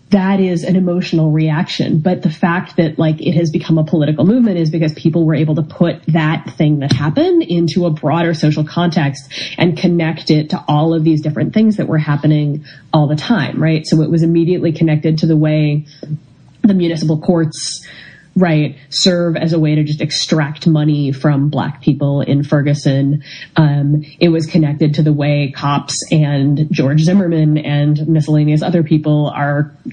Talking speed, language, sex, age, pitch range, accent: 180 wpm, English, female, 20-39, 150-175 Hz, American